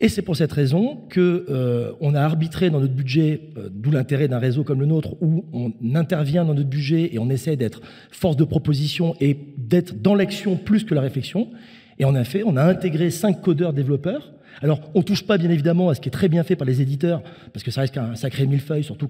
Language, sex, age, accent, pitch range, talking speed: French, male, 40-59, French, 135-180 Hz, 240 wpm